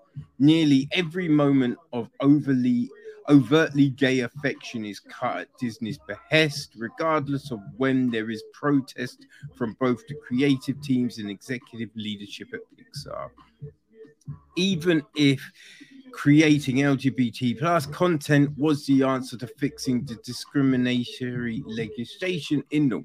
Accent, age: British, 30-49